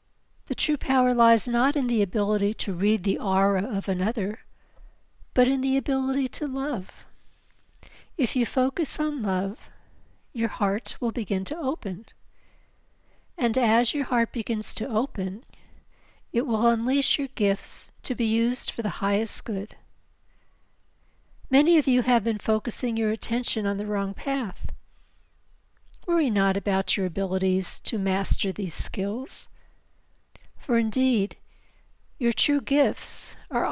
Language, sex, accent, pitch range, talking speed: English, female, American, 205-260 Hz, 135 wpm